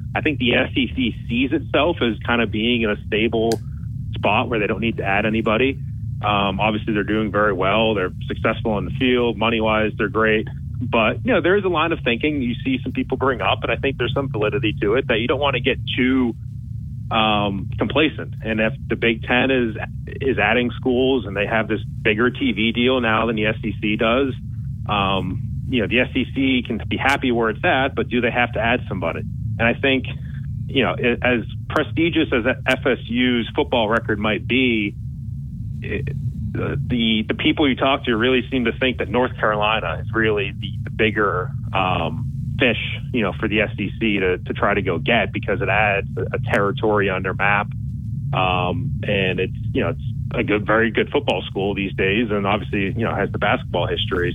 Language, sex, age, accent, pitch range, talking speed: English, male, 30-49, American, 110-130 Hz, 200 wpm